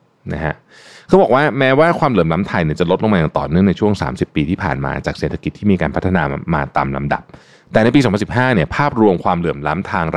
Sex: male